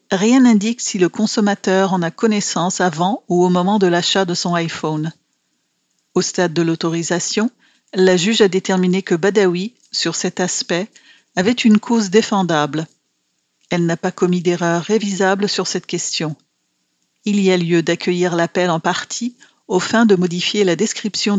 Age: 40-59